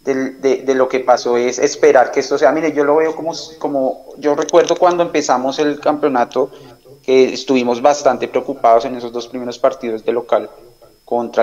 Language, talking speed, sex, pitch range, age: Spanish, 185 wpm, male, 125-145 Hz, 30-49